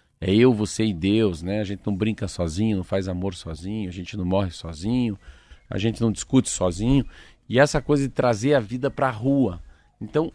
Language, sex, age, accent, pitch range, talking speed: Portuguese, male, 40-59, Brazilian, 100-135 Hz, 205 wpm